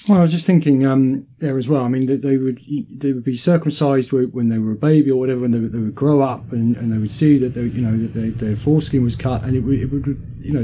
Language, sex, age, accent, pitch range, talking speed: English, male, 40-59, British, 135-165 Hz, 310 wpm